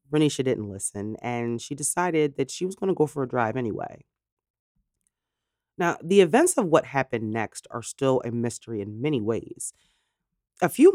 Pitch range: 120-160 Hz